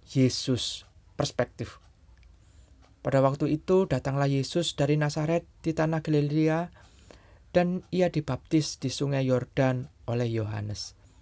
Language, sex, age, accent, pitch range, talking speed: Indonesian, male, 20-39, native, 100-155 Hz, 105 wpm